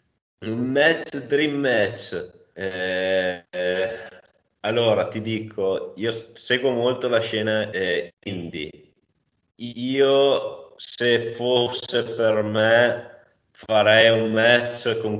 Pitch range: 100-125 Hz